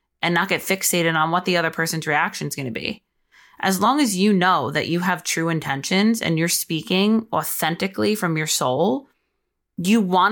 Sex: female